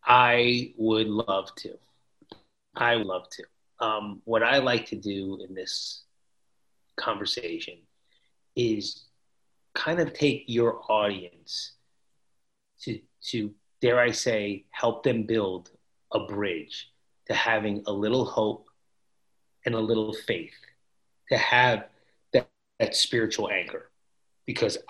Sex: male